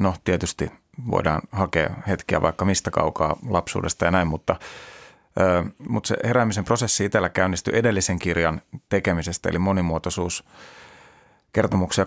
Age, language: 30-49, Finnish